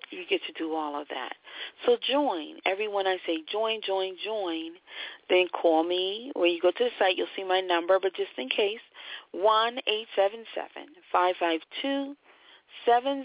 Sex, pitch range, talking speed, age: female, 165-225 Hz, 180 wpm, 40-59